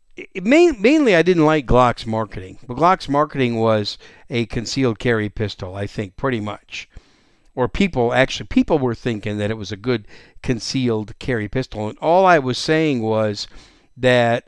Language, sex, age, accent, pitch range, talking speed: English, male, 50-69, American, 115-160 Hz, 160 wpm